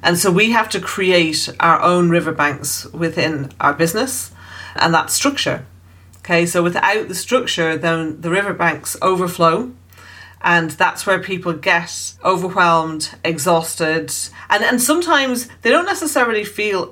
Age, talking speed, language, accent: 40-59, 135 wpm, English, British